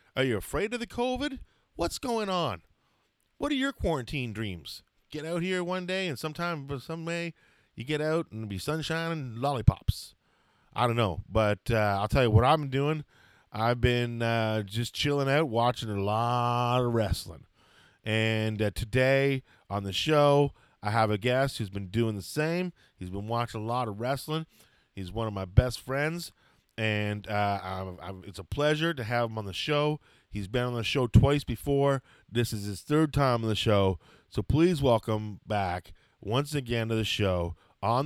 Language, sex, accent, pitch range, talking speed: English, male, American, 105-140 Hz, 185 wpm